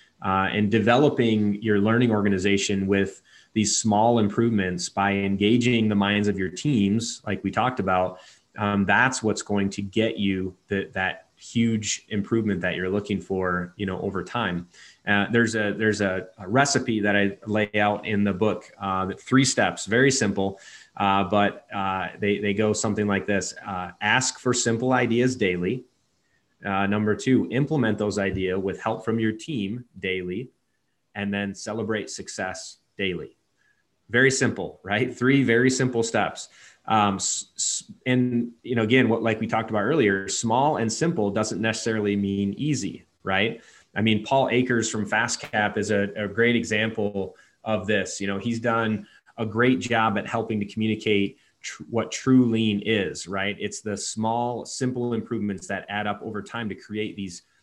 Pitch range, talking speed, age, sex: 100-120 Hz, 165 wpm, 30-49, male